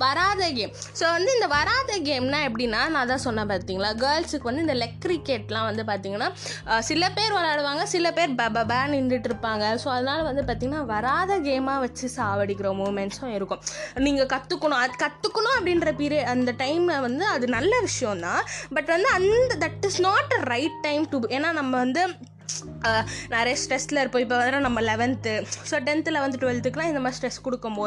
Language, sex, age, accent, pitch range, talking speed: English, female, 20-39, Indian, 220-305 Hz, 40 wpm